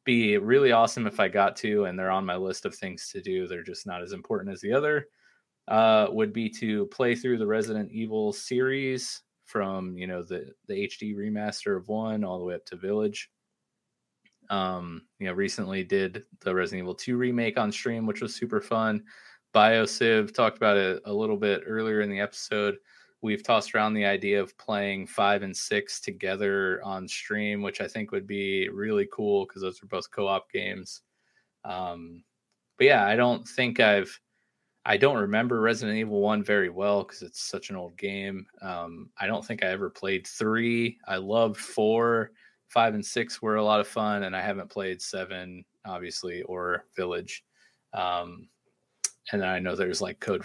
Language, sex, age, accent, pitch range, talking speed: English, male, 20-39, American, 95-120 Hz, 190 wpm